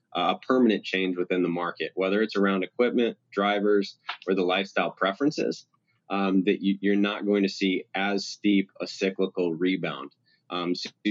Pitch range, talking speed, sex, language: 90-100 Hz, 155 wpm, male, English